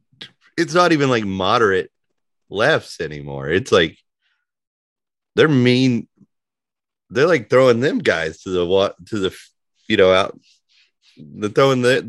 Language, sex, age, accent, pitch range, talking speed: English, male, 30-49, American, 90-125 Hz, 130 wpm